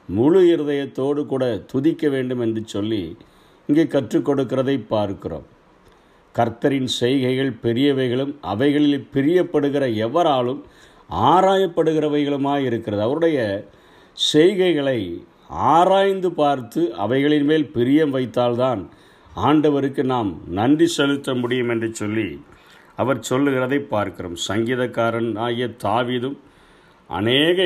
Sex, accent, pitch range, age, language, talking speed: male, native, 125-155 Hz, 50-69, Tamil, 85 wpm